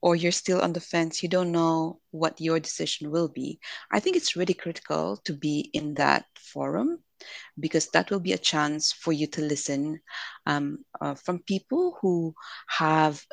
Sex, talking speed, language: female, 180 wpm, Filipino